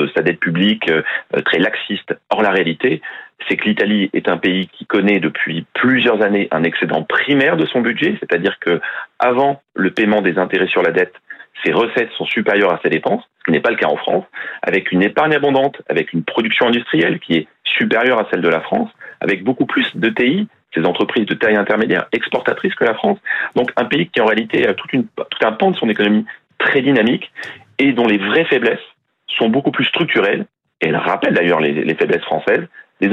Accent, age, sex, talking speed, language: French, 40-59, male, 210 wpm, French